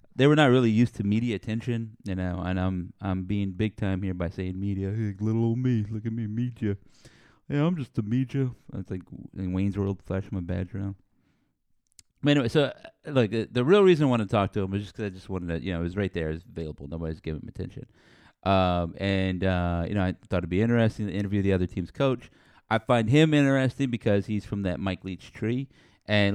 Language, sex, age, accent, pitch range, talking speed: English, male, 30-49, American, 95-115 Hz, 240 wpm